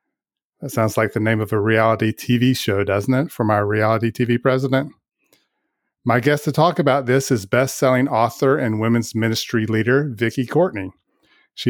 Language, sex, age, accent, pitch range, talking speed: English, male, 40-59, American, 110-130 Hz, 175 wpm